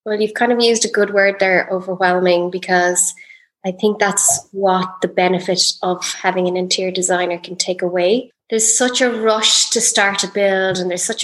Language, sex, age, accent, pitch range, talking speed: English, female, 20-39, Irish, 180-210 Hz, 190 wpm